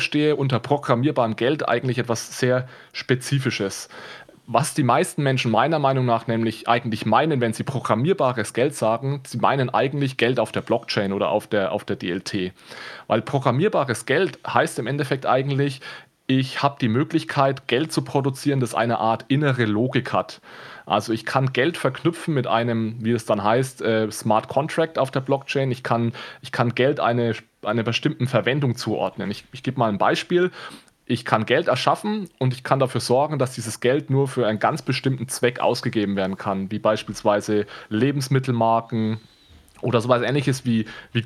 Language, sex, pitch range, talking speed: German, male, 115-140 Hz, 170 wpm